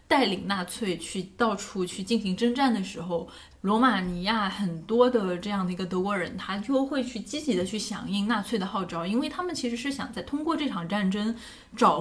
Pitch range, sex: 185-240 Hz, female